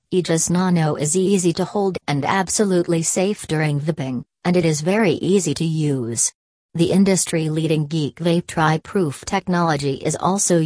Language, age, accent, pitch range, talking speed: English, 40-59, American, 150-175 Hz, 160 wpm